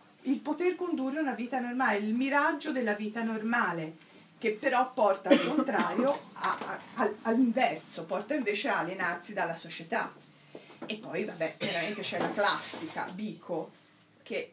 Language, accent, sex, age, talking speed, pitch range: Italian, native, female, 40-59, 140 wpm, 180-245 Hz